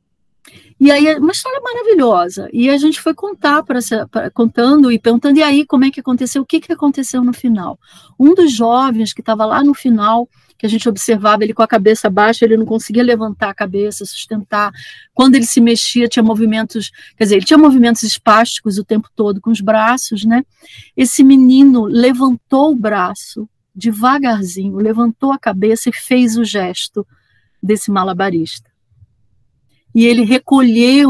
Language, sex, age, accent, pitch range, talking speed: Portuguese, female, 40-59, Brazilian, 210-260 Hz, 170 wpm